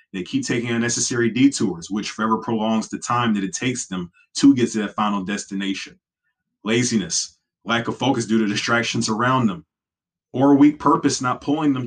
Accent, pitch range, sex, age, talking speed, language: American, 115-150 Hz, male, 20-39, 180 wpm, English